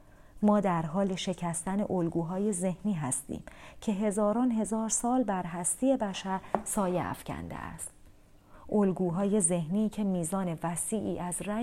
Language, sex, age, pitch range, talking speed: Persian, female, 40-59, 170-220 Hz, 120 wpm